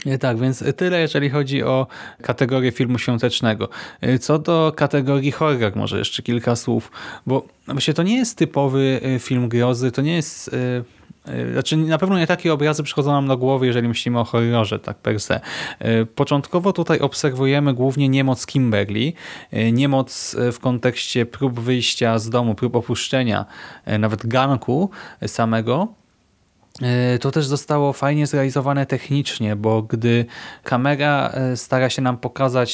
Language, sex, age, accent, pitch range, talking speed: Polish, male, 20-39, native, 120-145 Hz, 140 wpm